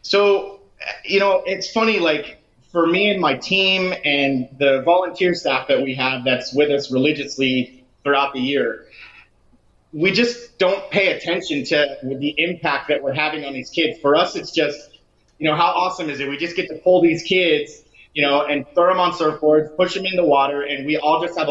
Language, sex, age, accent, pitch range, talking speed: English, male, 30-49, American, 135-160 Hz, 205 wpm